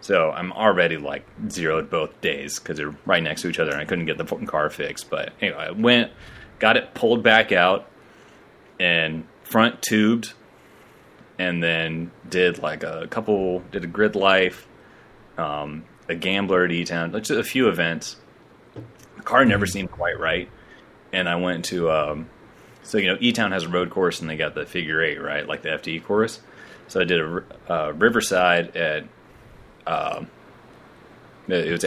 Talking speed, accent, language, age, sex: 175 wpm, American, English, 30-49, male